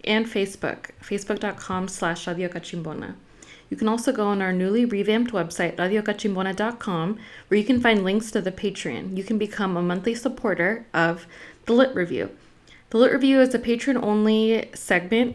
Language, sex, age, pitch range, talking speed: English, female, 20-39, 180-215 Hz, 155 wpm